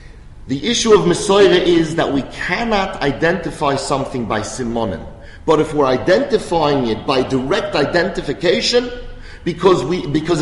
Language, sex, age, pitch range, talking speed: English, male, 40-59, 110-180 Hz, 130 wpm